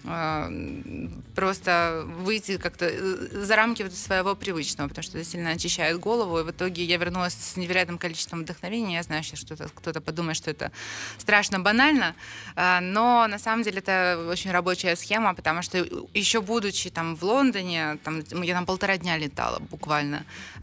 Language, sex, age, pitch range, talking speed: Russian, female, 20-39, 165-200 Hz, 150 wpm